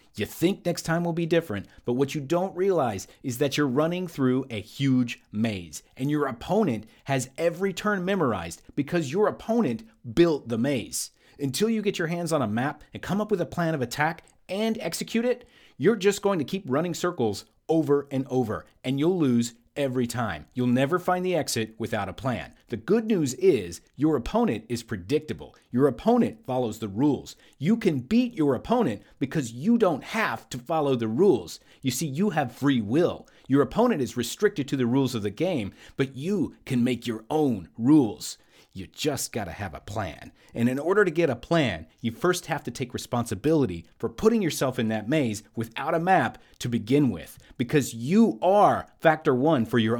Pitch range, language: 115-170 Hz, English